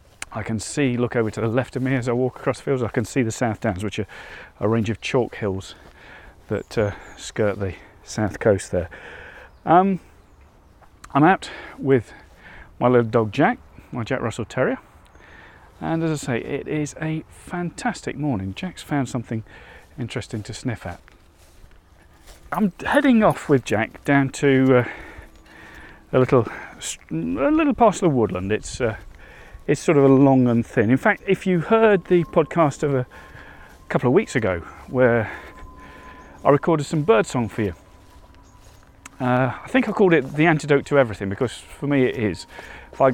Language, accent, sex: English, British, male